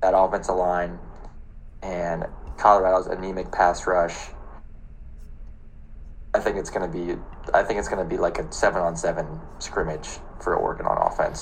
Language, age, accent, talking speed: English, 20-39, American, 150 wpm